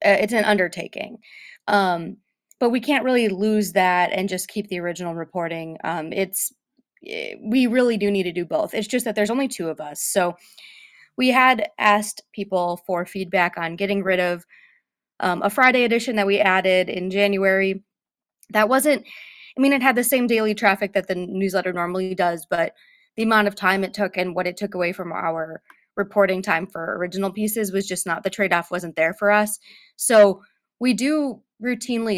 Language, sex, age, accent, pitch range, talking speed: English, female, 20-39, American, 180-230 Hz, 185 wpm